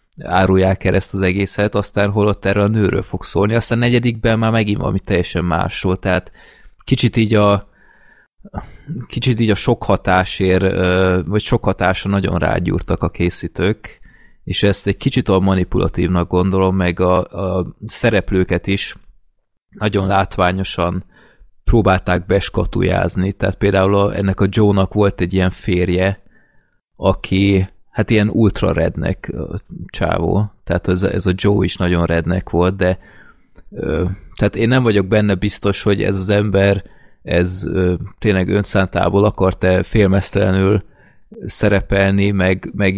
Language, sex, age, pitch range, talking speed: Hungarian, male, 30-49, 90-100 Hz, 125 wpm